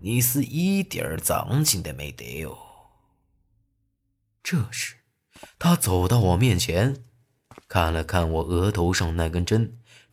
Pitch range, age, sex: 90-125 Hz, 30-49, male